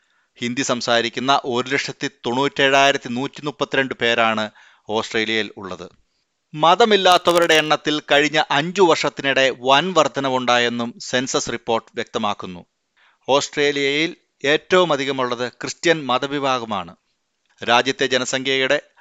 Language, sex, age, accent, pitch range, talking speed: Malayalam, male, 30-49, native, 120-145 Hz, 80 wpm